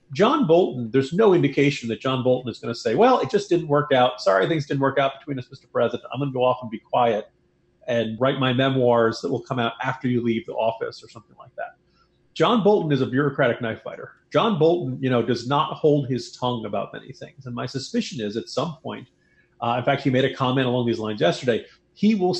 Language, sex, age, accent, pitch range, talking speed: English, male, 40-59, American, 120-155 Hz, 245 wpm